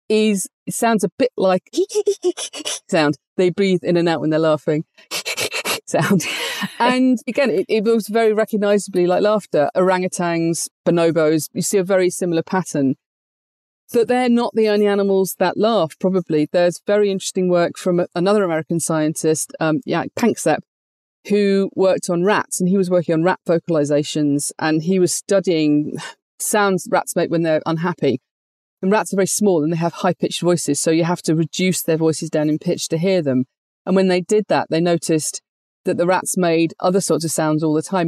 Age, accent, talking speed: 40-59, British, 175 wpm